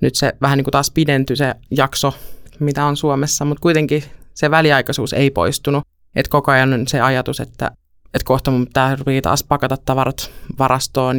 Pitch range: 135-150 Hz